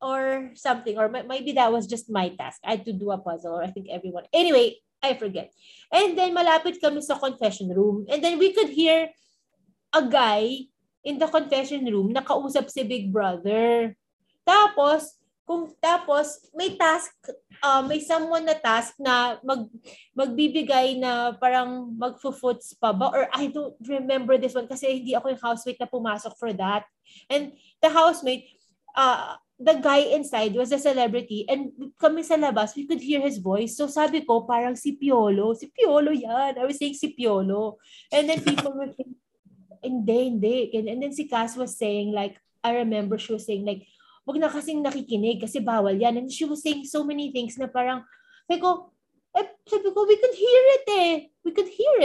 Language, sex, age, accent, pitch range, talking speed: Filipino, female, 30-49, native, 235-310 Hz, 185 wpm